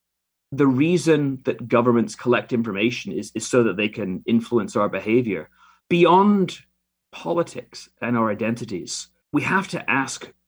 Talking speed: 135 wpm